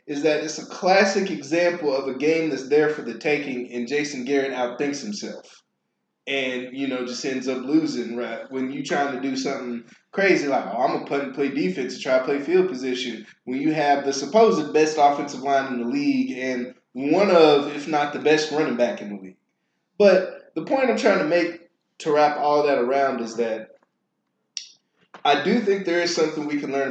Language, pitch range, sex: English, 125-170 Hz, male